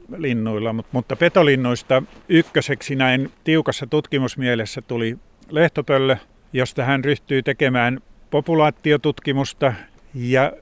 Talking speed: 85 wpm